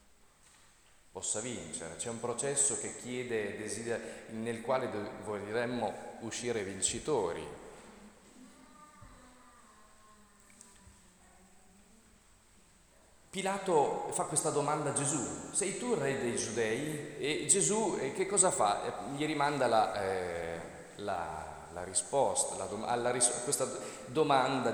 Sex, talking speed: male, 105 wpm